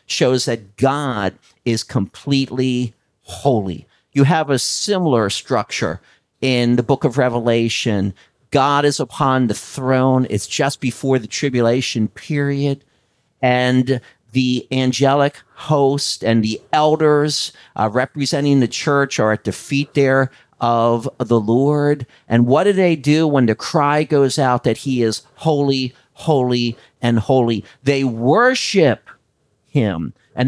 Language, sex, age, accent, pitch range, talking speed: English, male, 50-69, American, 120-150 Hz, 135 wpm